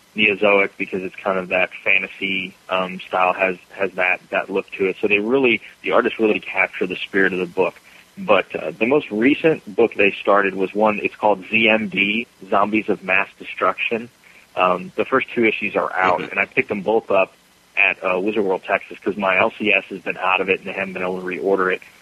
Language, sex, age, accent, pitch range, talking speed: English, male, 30-49, American, 95-105 Hz, 215 wpm